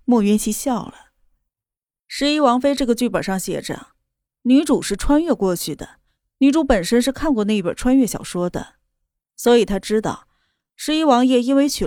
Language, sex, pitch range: Chinese, female, 210-275 Hz